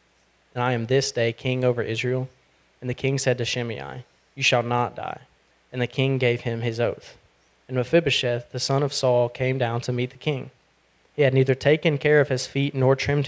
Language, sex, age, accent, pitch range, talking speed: English, male, 20-39, American, 120-135 Hz, 210 wpm